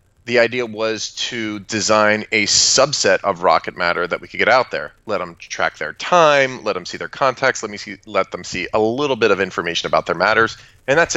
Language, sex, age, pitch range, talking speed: English, male, 30-49, 105-130 Hz, 225 wpm